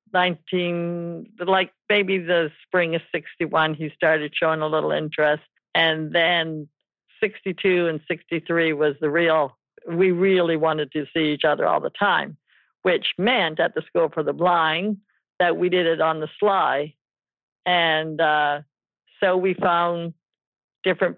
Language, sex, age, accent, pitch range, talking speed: English, female, 60-79, American, 155-180 Hz, 155 wpm